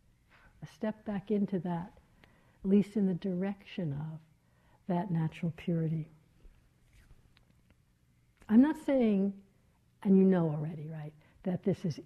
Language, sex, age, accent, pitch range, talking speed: English, female, 60-79, American, 160-210 Hz, 120 wpm